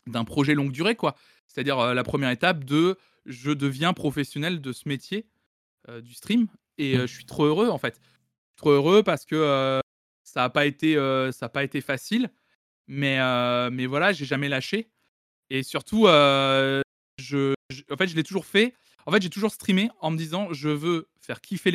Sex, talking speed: male, 200 wpm